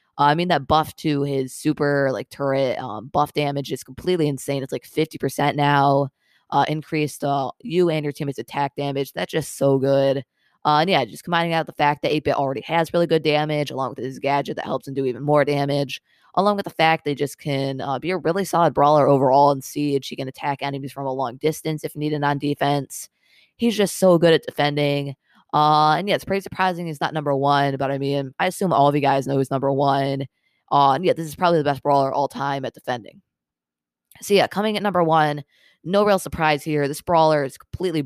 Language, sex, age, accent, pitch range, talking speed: English, female, 20-39, American, 140-160 Hz, 230 wpm